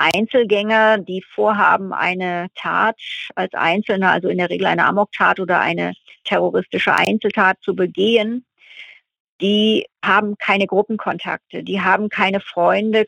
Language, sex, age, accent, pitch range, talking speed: German, female, 50-69, German, 185-210 Hz, 125 wpm